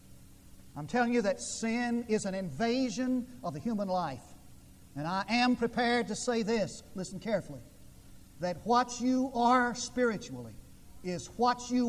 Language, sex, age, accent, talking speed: English, male, 50-69, American, 145 wpm